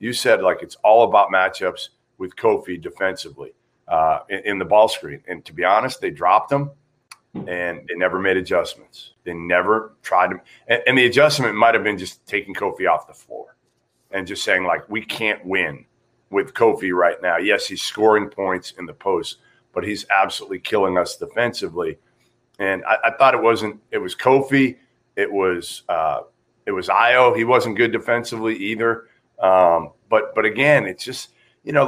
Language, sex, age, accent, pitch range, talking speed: English, male, 40-59, American, 105-145 Hz, 180 wpm